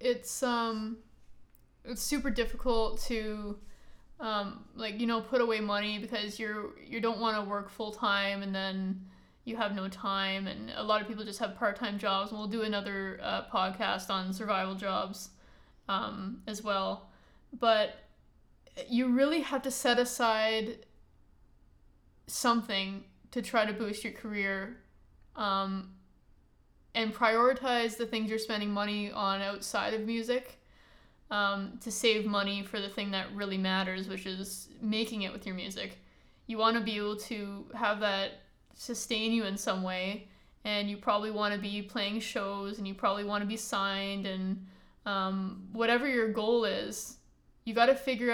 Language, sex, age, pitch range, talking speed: English, female, 20-39, 195-230 Hz, 160 wpm